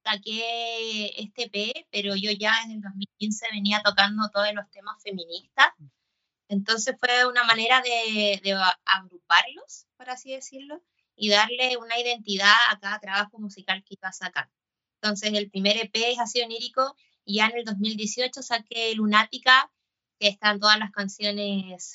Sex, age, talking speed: female, 20-39, 150 wpm